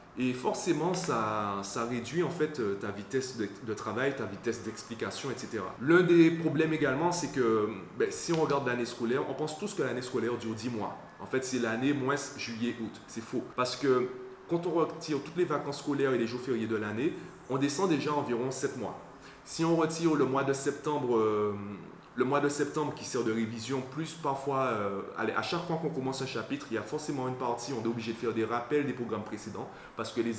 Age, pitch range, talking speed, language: 30-49, 115-150 Hz, 215 wpm, French